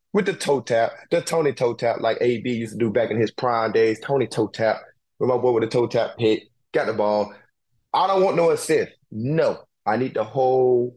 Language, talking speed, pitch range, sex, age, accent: English, 230 wpm, 110-145 Hz, male, 20-39, American